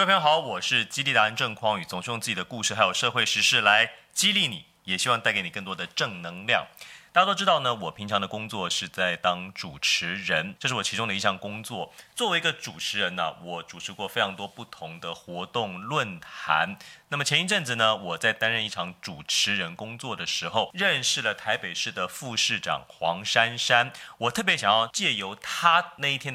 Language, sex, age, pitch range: Chinese, male, 30-49, 100-140 Hz